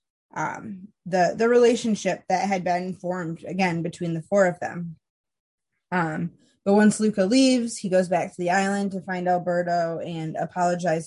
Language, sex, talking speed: English, female, 165 wpm